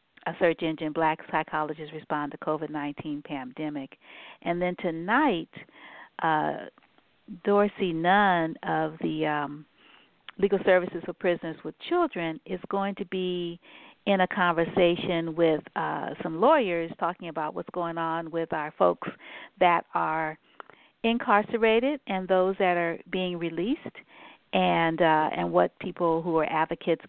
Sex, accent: female, American